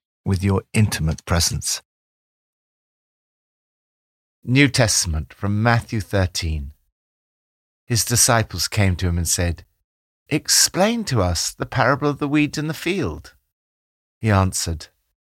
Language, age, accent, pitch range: English, 50-69, British, 80-130 Hz